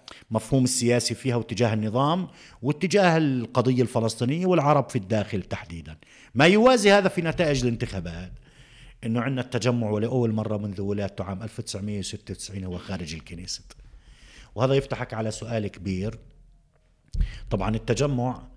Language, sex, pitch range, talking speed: Arabic, male, 100-130 Hz, 115 wpm